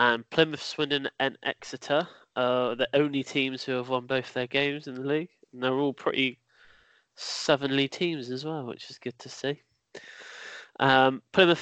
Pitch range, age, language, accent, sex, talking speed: 125-145 Hz, 20-39, English, British, male, 170 wpm